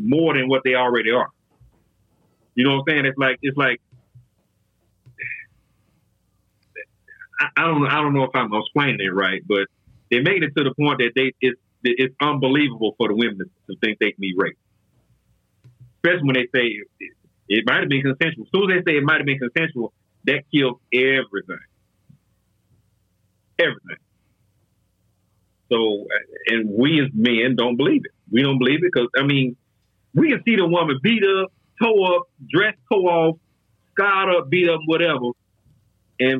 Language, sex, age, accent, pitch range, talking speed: English, male, 40-59, American, 105-140 Hz, 170 wpm